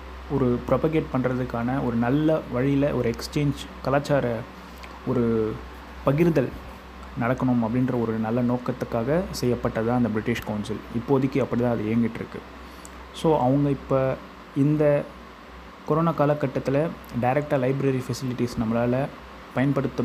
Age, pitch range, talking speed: 20-39, 110-135 Hz, 110 wpm